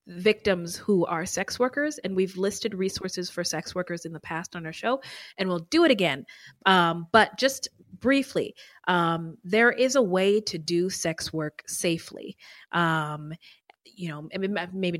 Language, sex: English, female